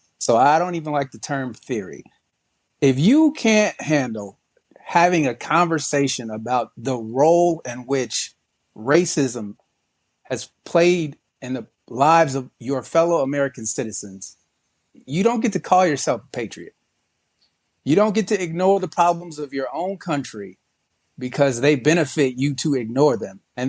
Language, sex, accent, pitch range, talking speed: English, male, American, 125-165 Hz, 145 wpm